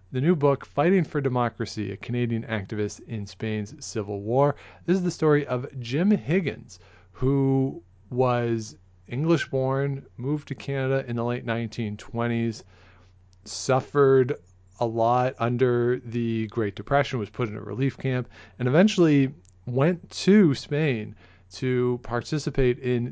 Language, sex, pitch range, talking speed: English, male, 105-135 Hz, 135 wpm